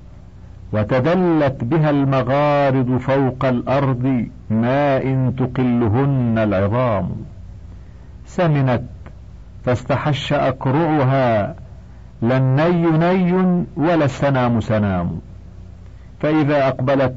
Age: 50-69